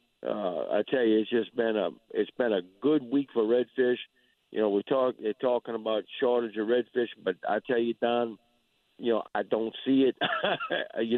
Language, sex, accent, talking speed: English, male, American, 200 wpm